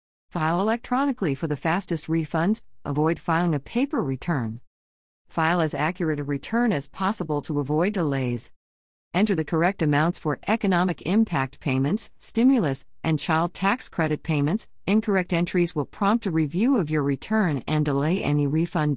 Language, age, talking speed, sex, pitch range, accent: English, 50-69, 150 wpm, female, 150-200 Hz, American